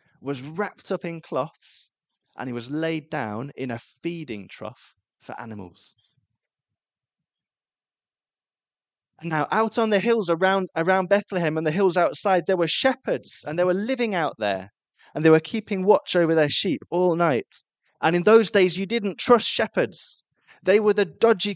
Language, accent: English, British